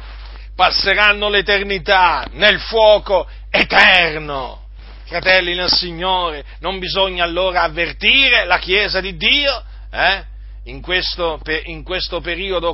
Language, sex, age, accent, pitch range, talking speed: Italian, male, 40-59, native, 165-195 Hz, 105 wpm